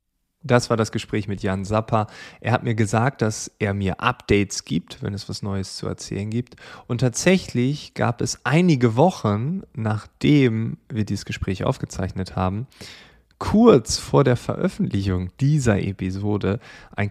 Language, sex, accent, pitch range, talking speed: German, male, German, 100-130 Hz, 145 wpm